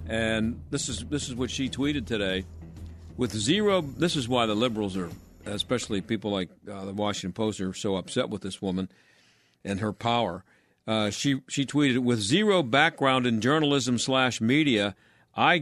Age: 50-69